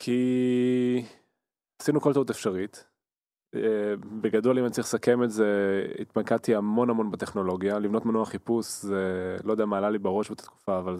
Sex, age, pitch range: male, 20-39, 105-125 Hz